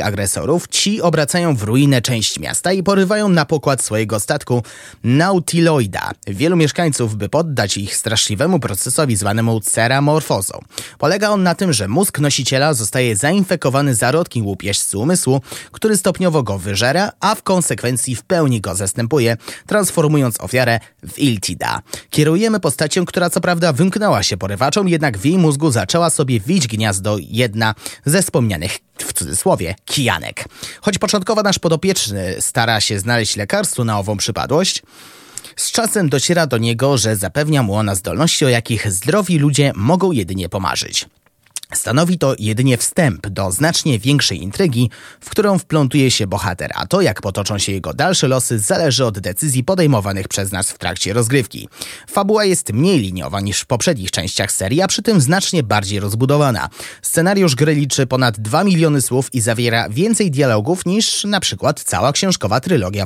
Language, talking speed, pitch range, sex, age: Polish, 155 wpm, 110-170 Hz, male, 30-49